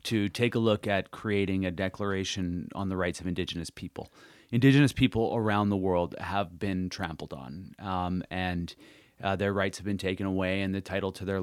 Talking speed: 195 wpm